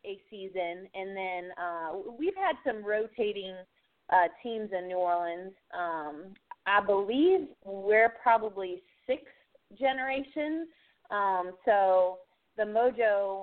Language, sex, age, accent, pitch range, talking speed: English, female, 20-39, American, 180-230 Hz, 110 wpm